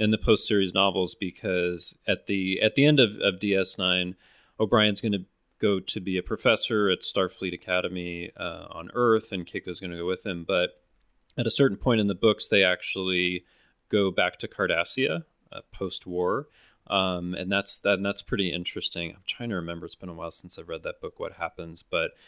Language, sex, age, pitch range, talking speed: English, male, 30-49, 90-110 Hz, 200 wpm